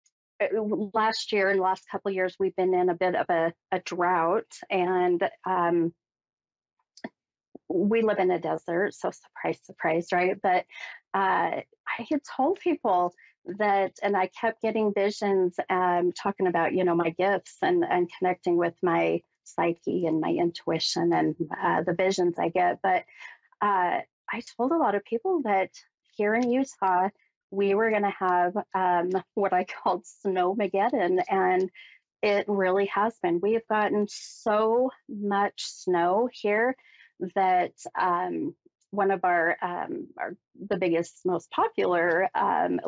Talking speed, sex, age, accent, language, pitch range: 145 wpm, female, 30-49, American, English, 180-210 Hz